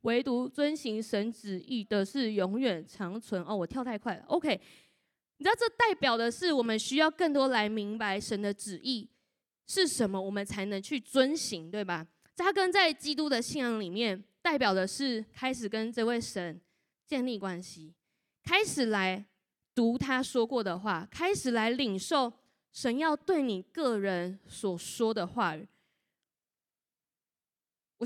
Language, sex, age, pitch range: Chinese, female, 20-39, 205-285 Hz